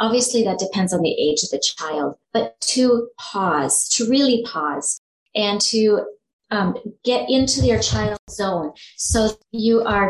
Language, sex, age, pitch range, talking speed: English, female, 30-49, 190-235 Hz, 155 wpm